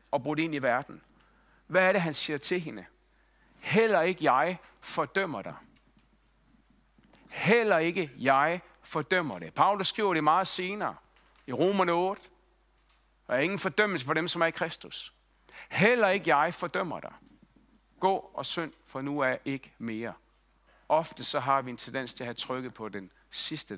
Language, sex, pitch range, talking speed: Danish, male, 120-170 Hz, 165 wpm